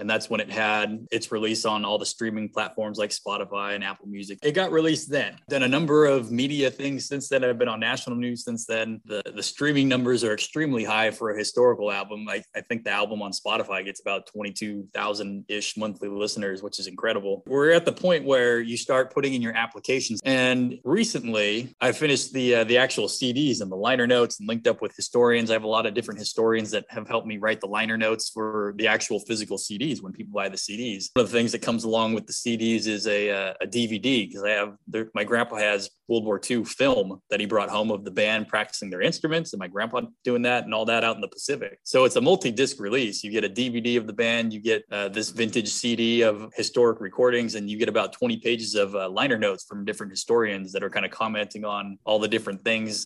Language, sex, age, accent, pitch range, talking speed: English, male, 20-39, American, 105-125 Hz, 235 wpm